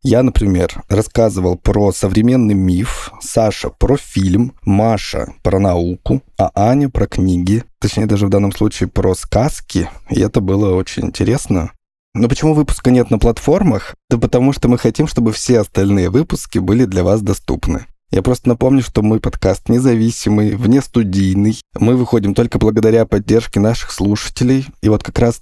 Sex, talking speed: male, 160 wpm